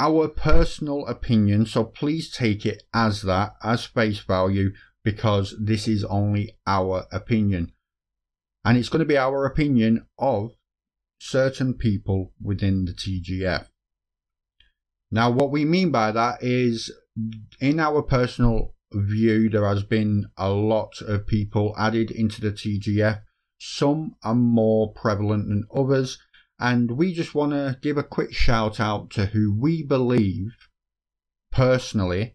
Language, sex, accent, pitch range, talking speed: English, male, British, 100-120 Hz, 135 wpm